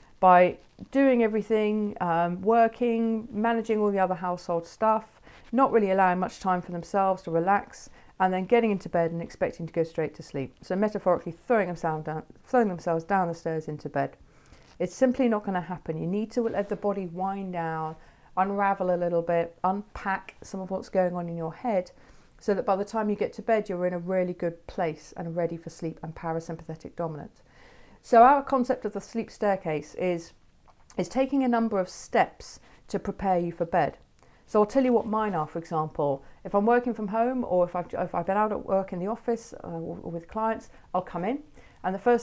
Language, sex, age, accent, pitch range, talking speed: English, female, 40-59, British, 170-215 Hz, 205 wpm